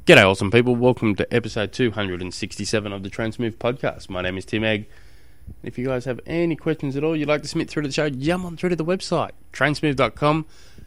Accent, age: Australian, 20-39